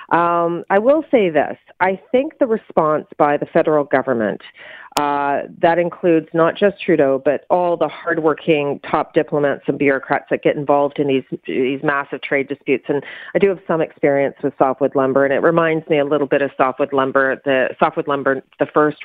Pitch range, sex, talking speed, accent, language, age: 140-170 Hz, female, 190 wpm, American, English, 40-59